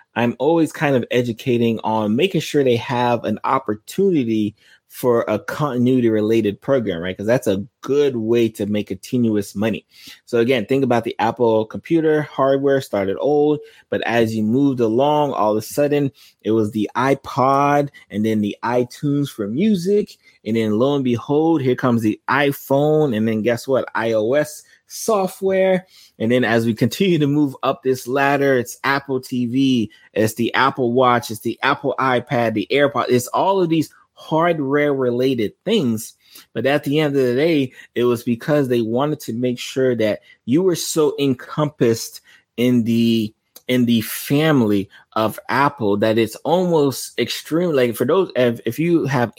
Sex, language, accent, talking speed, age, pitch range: male, English, American, 170 wpm, 20-39, 110-140 Hz